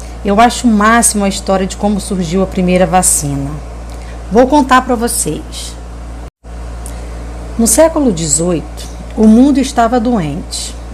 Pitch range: 145-235 Hz